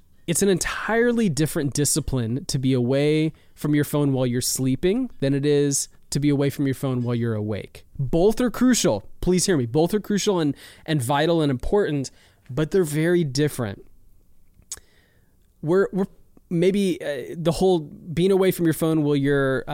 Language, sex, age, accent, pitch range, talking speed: English, male, 20-39, American, 135-175 Hz, 175 wpm